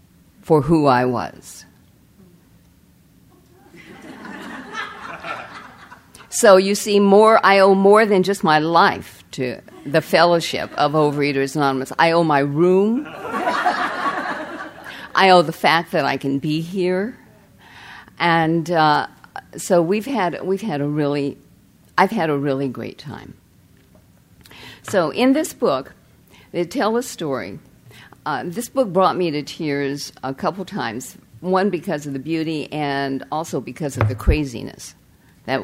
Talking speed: 135 wpm